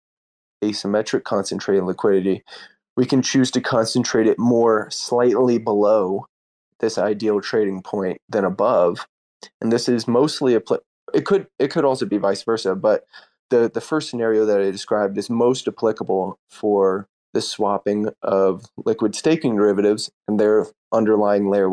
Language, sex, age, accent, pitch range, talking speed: English, male, 20-39, American, 100-120 Hz, 140 wpm